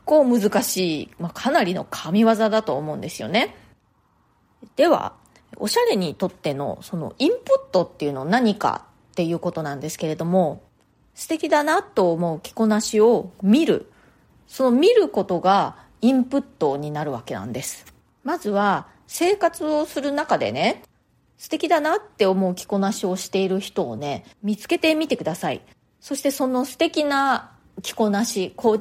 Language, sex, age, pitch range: Japanese, female, 30-49, 190-285 Hz